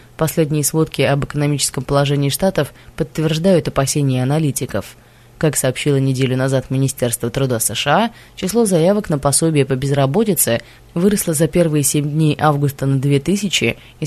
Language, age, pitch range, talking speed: Russian, 20-39, 135-165 Hz, 130 wpm